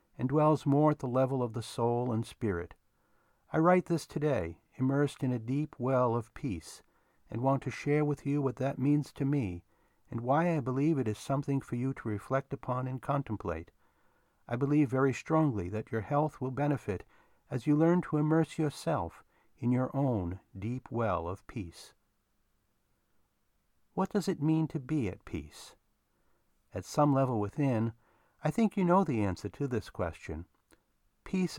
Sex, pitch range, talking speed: male, 110-145 Hz, 175 wpm